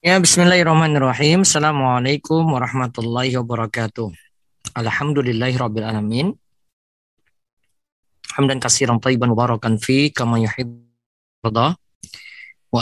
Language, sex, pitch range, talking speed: Indonesian, male, 115-130 Hz, 70 wpm